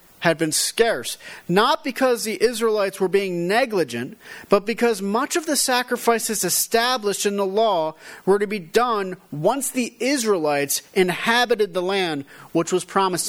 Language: English